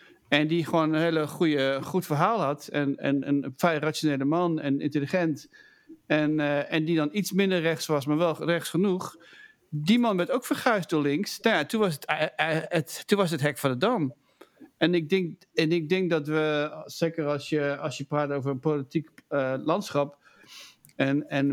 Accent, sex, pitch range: Dutch, male, 145-180 Hz